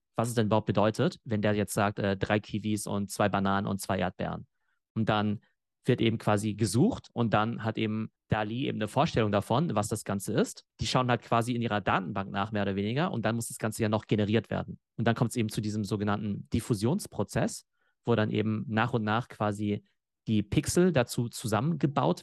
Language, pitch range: German, 105-125 Hz